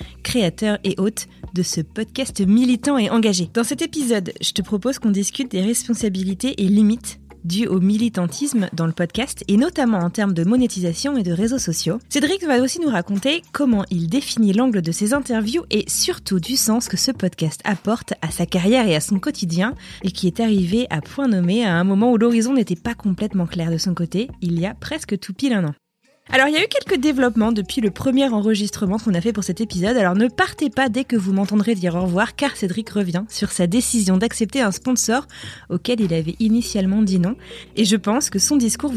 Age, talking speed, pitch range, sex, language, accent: 20-39, 215 wpm, 185-240 Hz, female, French, French